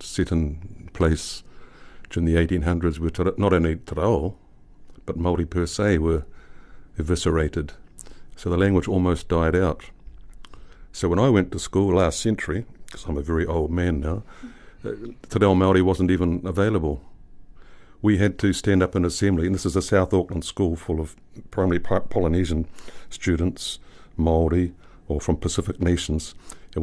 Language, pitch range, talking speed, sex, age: English, 80-95 Hz, 155 wpm, male, 60-79